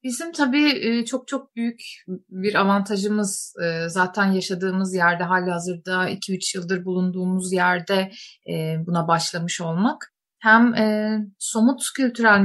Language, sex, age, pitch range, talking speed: Turkish, female, 30-49, 185-225 Hz, 100 wpm